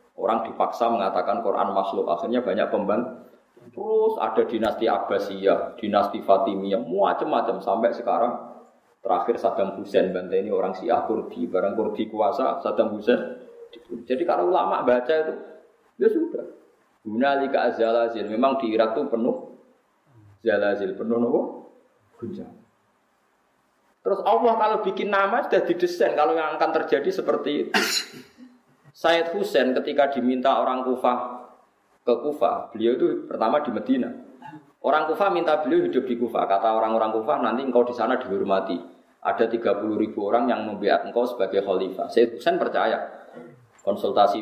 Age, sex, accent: 20-39, male, native